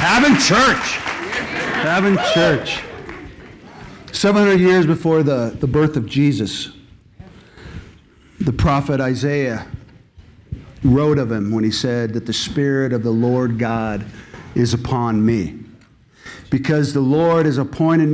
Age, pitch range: 50-69, 130-185 Hz